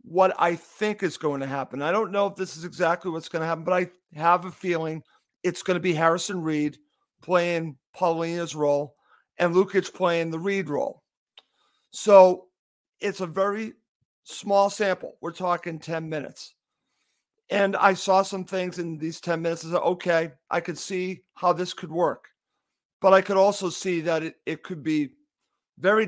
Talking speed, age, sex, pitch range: 175 wpm, 50-69, male, 170-195 Hz